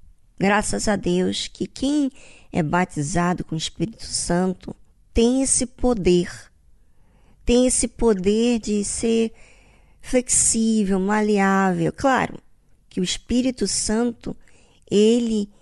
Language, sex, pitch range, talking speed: Portuguese, male, 195-255 Hz, 105 wpm